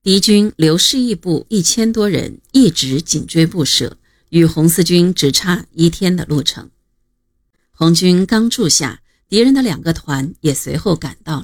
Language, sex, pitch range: Chinese, female, 150-200 Hz